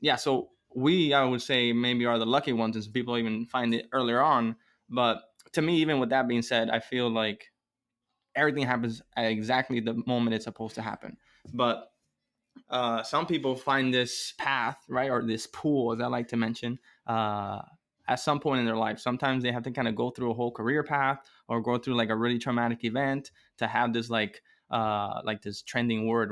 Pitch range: 115-130 Hz